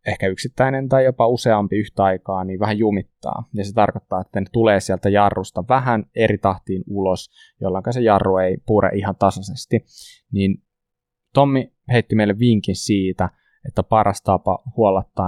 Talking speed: 150 wpm